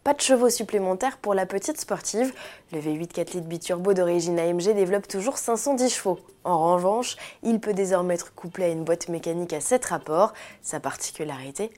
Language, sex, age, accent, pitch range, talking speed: French, female, 20-39, French, 165-215 Hz, 175 wpm